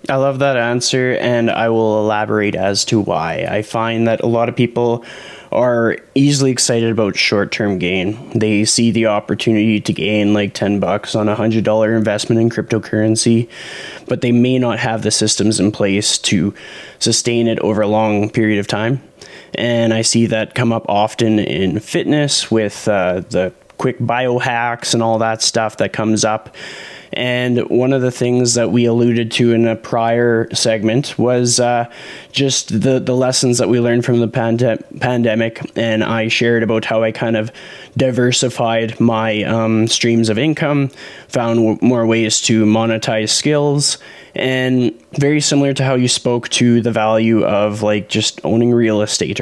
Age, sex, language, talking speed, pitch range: 20-39, male, English, 170 wpm, 110-125 Hz